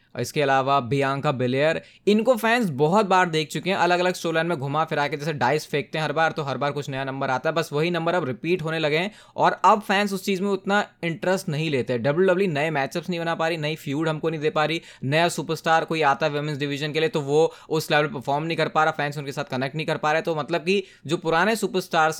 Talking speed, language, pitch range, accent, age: 260 wpm, Hindi, 145-180 Hz, native, 20-39